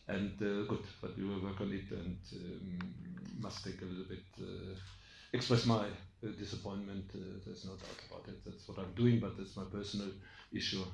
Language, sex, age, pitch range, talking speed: English, male, 50-69, 95-110 Hz, 195 wpm